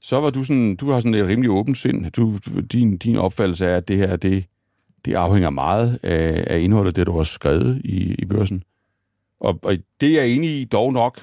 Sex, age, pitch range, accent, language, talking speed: male, 60-79, 90-115 Hz, native, Danish, 205 wpm